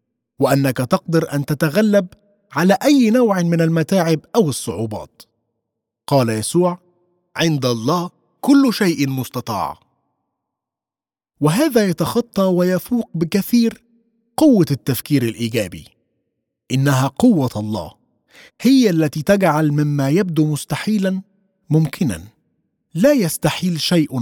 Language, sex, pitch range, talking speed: Arabic, male, 130-195 Hz, 95 wpm